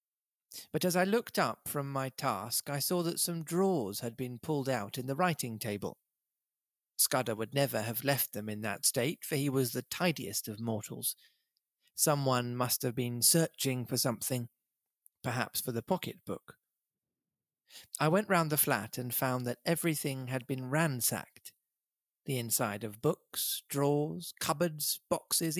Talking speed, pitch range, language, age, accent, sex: 155 wpm, 120-160 Hz, English, 40-59, British, male